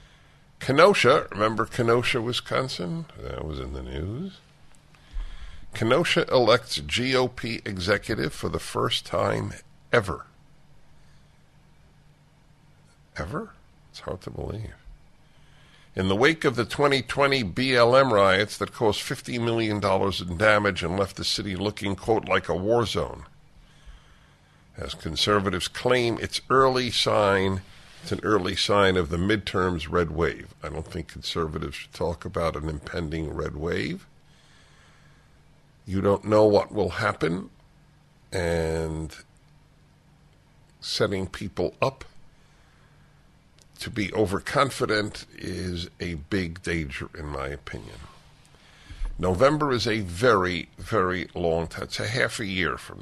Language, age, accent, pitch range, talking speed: English, 50-69, American, 85-125 Hz, 120 wpm